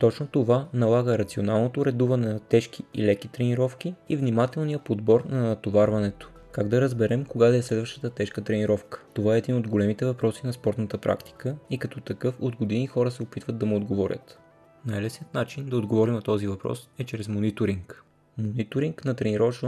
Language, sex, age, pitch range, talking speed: Bulgarian, male, 20-39, 110-130 Hz, 175 wpm